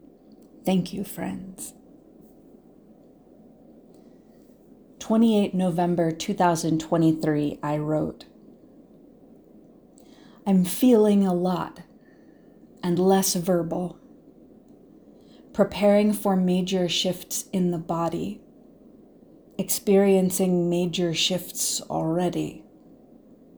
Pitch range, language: 170-210 Hz, English